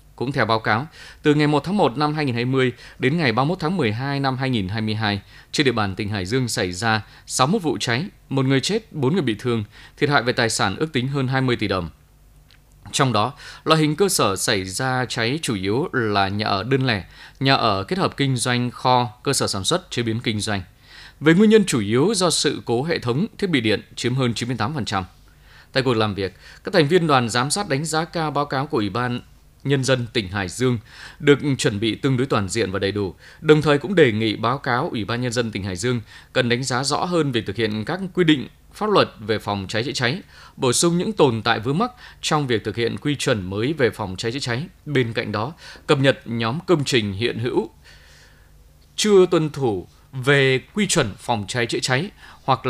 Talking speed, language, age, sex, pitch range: 225 wpm, Vietnamese, 20-39, male, 110-145 Hz